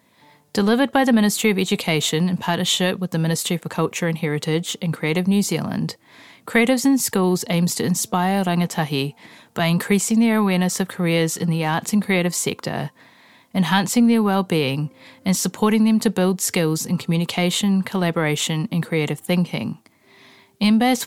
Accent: Australian